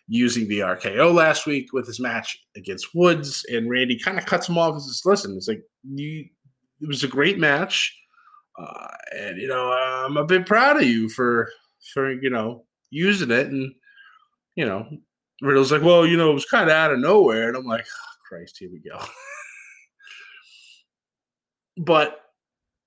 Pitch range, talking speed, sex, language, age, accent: 130-195 Hz, 180 wpm, male, English, 20-39, American